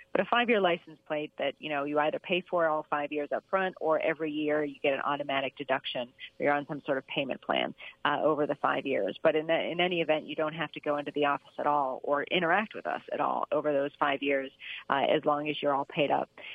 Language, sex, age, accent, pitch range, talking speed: English, female, 40-59, American, 145-165 Hz, 260 wpm